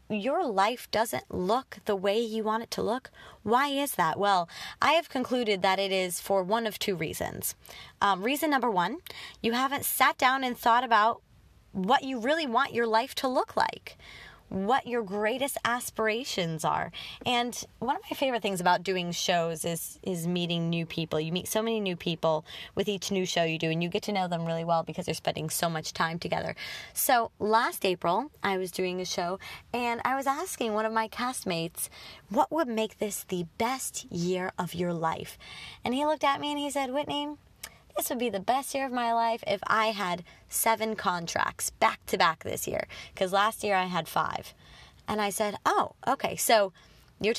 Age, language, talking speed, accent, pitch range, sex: 20-39, English, 200 wpm, American, 180-245 Hz, female